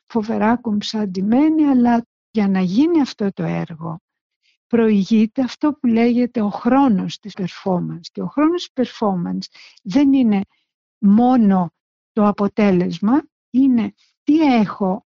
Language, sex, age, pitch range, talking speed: Greek, female, 60-79, 195-255 Hz, 120 wpm